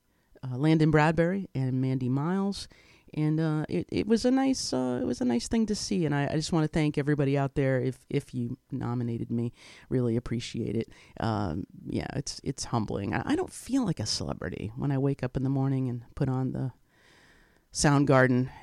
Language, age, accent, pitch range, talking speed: English, 40-59, American, 125-165 Hz, 200 wpm